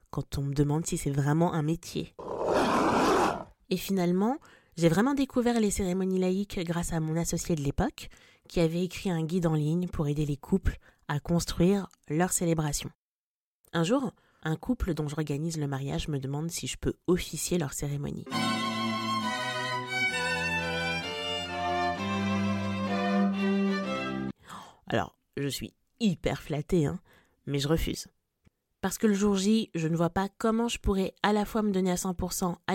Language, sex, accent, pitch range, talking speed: French, female, French, 155-200 Hz, 150 wpm